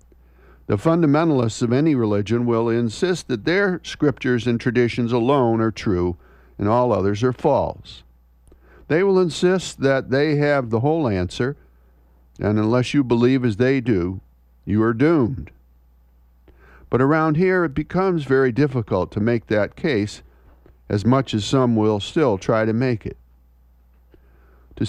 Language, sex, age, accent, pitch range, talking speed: English, male, 60-79, American, 90-140 Hz, 145 wpm